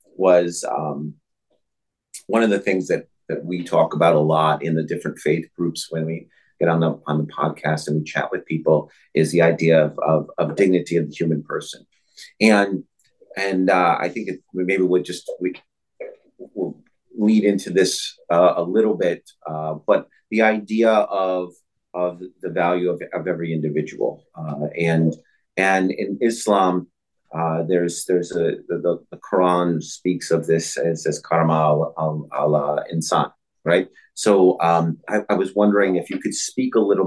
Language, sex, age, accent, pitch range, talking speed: English, male, 30-49, American, 80-95 Hz, 170 wpm